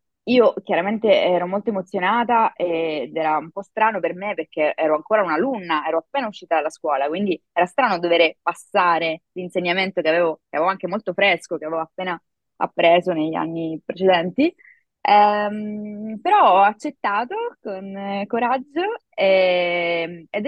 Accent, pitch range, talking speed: Italian, 160-215 Hz, 145 wpm